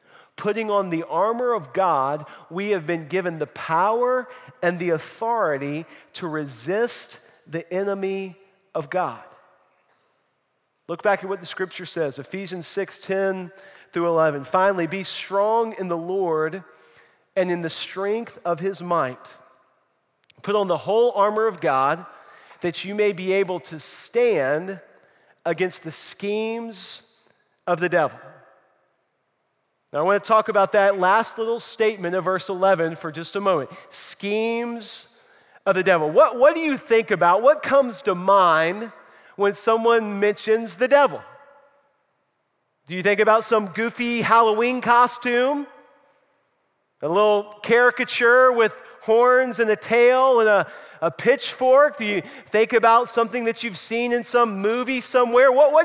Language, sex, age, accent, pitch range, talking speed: English, male, 40-59, American, 180-235 Hz, 145 wpm